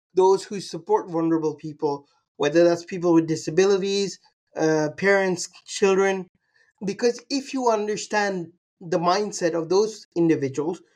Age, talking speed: 30-49, 120 wpm